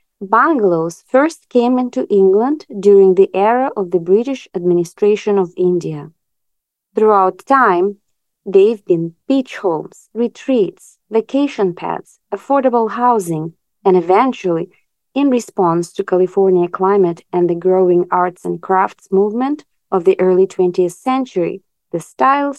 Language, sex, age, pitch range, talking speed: English, female, 30-49, 175-245 Hz, 120 wpm